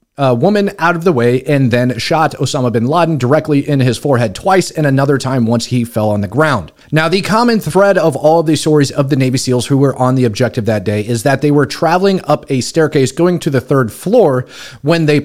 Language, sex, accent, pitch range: English, male, American, 125-165 Hz